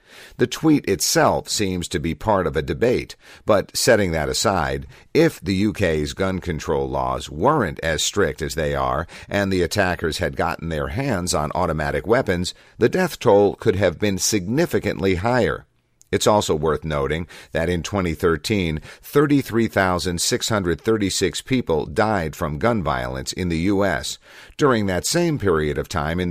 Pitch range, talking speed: 80-110 Hz, 155 wpm